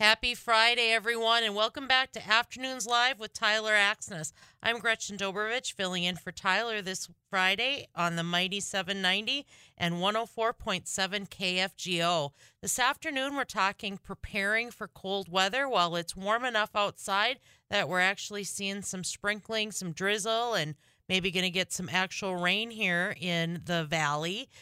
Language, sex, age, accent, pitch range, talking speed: English, female, 40-59, American, 170-220 Hz, 150 wpm